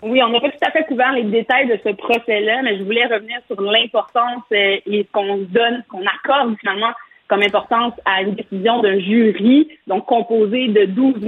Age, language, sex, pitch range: 30-49, French, female, 205-250 Hz